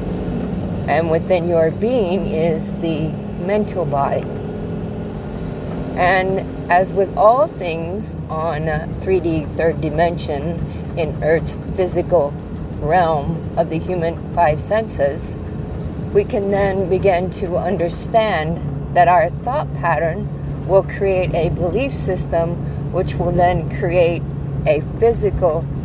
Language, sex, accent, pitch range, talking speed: English, female, American, 155-195 Hz, 110 wpm